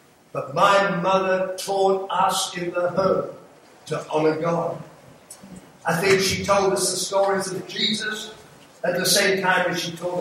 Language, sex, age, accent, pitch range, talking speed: English, male, 50-69, British, 160-210 Hz, 160 wpm